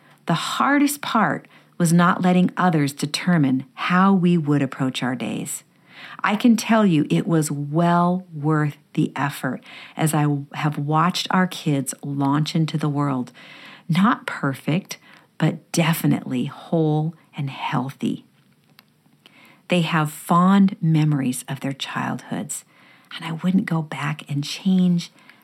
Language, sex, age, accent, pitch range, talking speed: English, female, 50-69, American, 145-185 Hz, 130 wpm